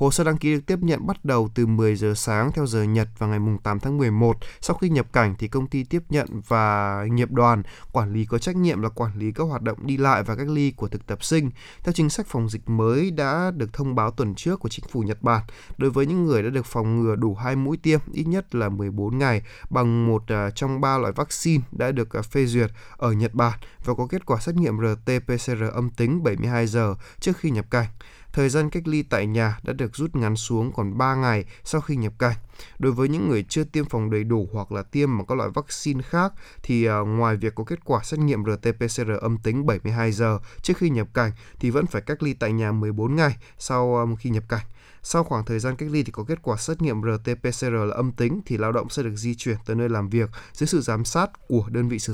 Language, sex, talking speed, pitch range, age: Vietnamese, male, 245 wpm, 110-140 Hz, 20-39